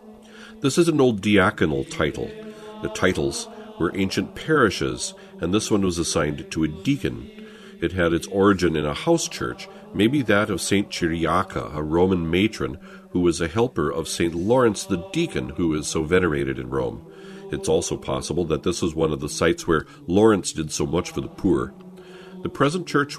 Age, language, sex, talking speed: 50-69, English, male, 185 wpm